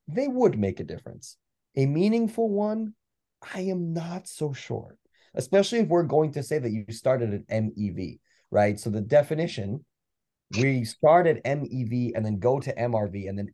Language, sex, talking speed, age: English, male, 175 wpm, 30-49